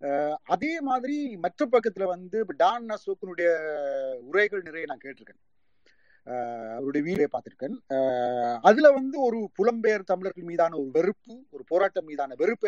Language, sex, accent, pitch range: Tamil, male, native, 145-210 Hz